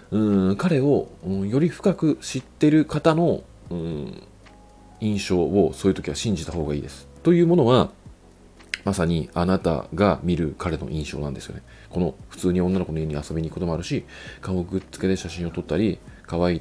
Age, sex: 40-59, male